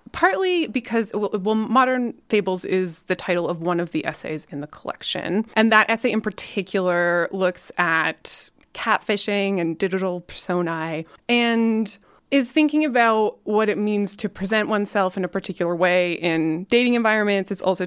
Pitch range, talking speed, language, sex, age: 165-210 Hz, 155 wpm, English, female, 20-39